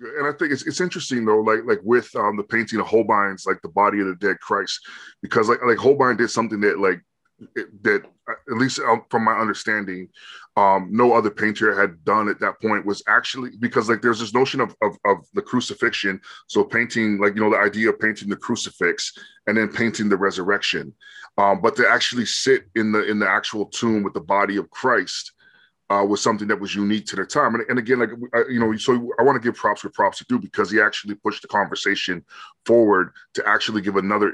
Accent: American